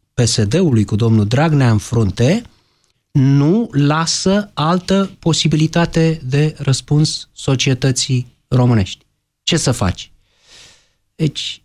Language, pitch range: Romanian, 120-180 Hz